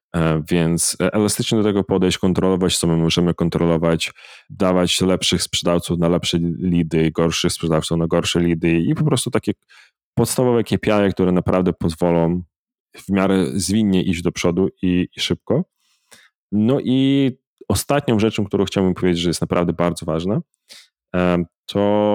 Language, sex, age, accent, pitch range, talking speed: Polish, male, 20-39, native, 85-105 Hz, 140 wpm